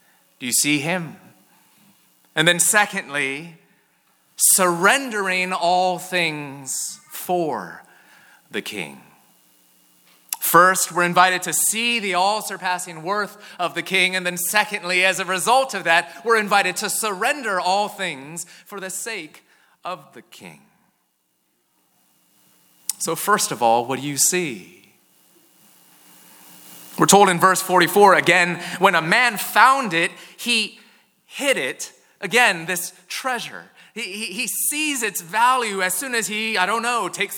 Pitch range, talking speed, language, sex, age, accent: 175-215 Hz, 135 wpm, English, male, 30-49, American